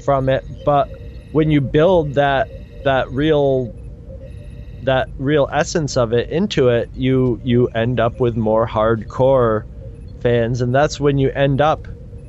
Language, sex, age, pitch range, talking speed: English, male, 30-49, 115-140 Hz, 145 wpm